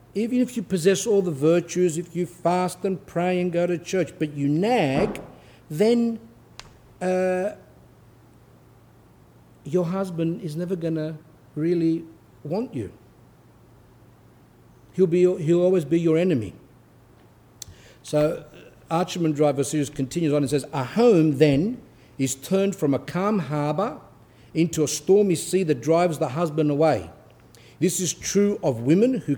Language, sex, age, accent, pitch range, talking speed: English, male, 60-79, South African, 135-180 Hz, 140 wpm